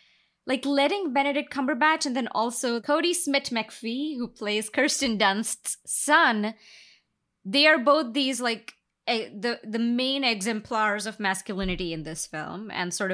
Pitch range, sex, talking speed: 195-280 Hz, female, 145 wpm